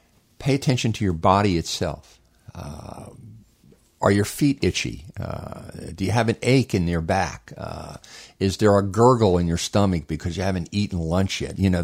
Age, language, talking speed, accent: 50-69, English, 180 wpm, American